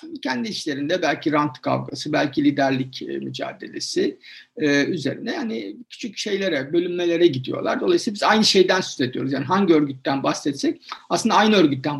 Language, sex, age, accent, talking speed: Turkish, male, 60-79, native, 135 wpm